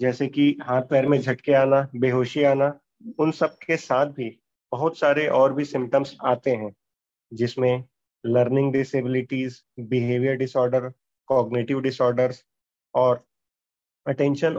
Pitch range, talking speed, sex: 125-145 Hz, 125 wpm, male